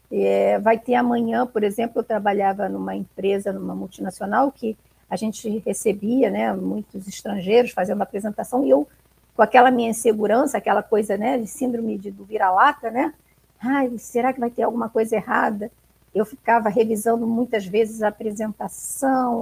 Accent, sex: Brazilian, female